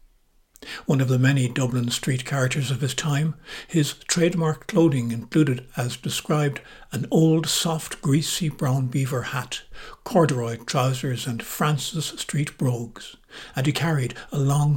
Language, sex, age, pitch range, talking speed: English, male, 60-79, 125-155 Hz, 140 wpm